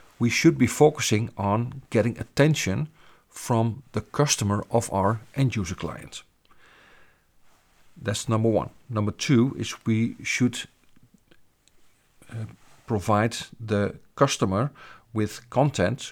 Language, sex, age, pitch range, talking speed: English, male, 50-69, 105-125 Hz, 110 wpm